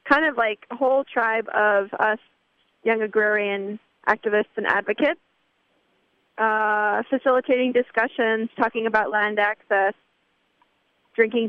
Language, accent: English, American